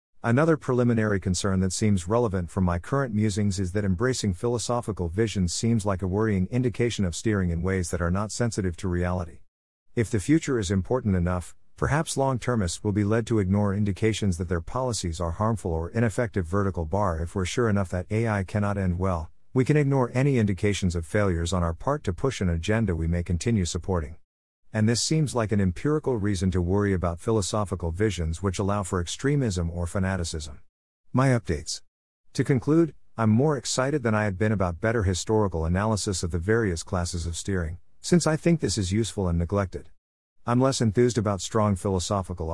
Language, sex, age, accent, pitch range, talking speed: English, male, 50-69, American, 90-115 Hz, 190 wpm